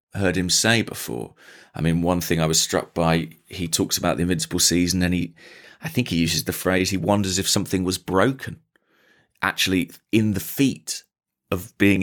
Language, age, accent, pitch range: English, 30-49, British, 85-100 Hz